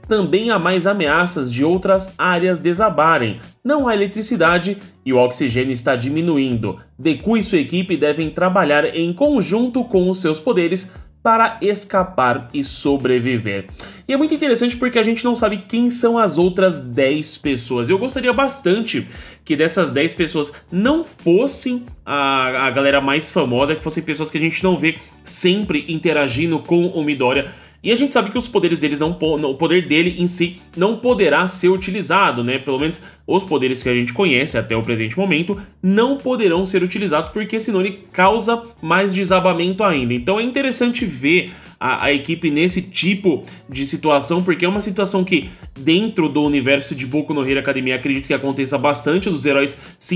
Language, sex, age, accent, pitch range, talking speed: Portuguese, male, 20-39, Brazilian, 145-200 Hz, 175 wpm